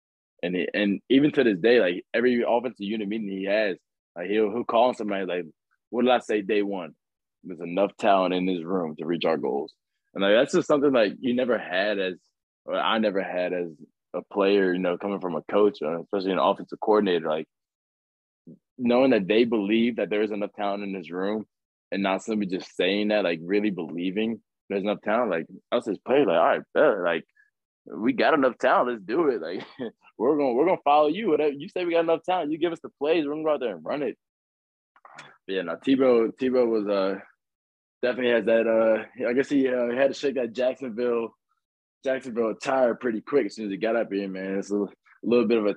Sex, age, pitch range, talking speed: male, 20-39, 95-125 Hz, 225 wpm